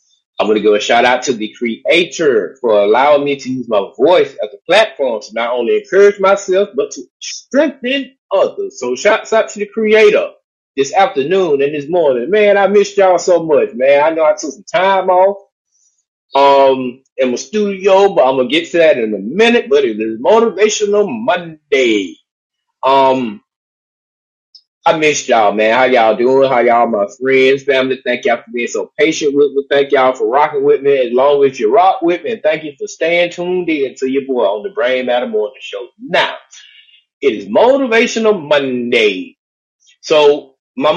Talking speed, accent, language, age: 190 wpm, American, English, 30-49